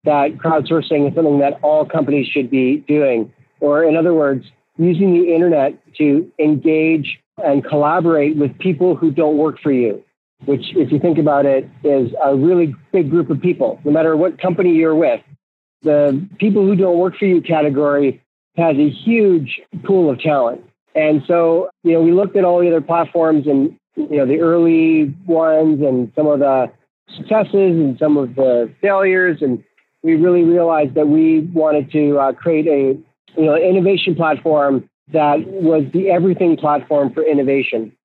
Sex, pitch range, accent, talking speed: male, 145-165 Hz, American, 175 wpm